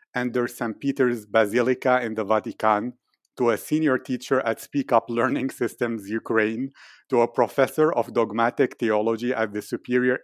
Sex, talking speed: male, 150 wpm